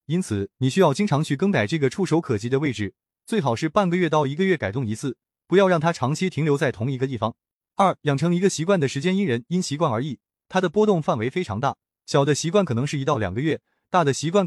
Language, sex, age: Chinese, male, 20-39